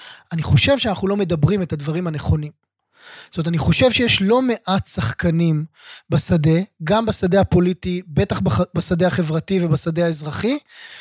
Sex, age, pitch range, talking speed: male, 20-39, 170-240 Hz, 135 wpm